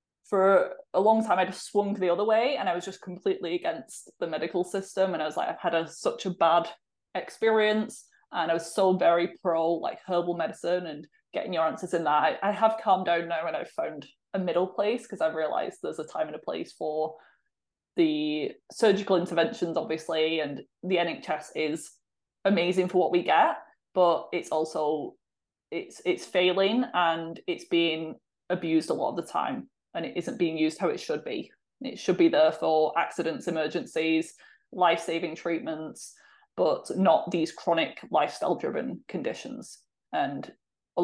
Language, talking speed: English, 175 wpm